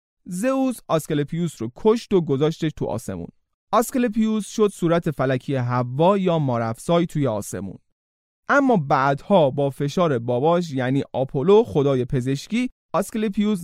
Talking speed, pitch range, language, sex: 120 wpm, 125-190 Hz, Persian, male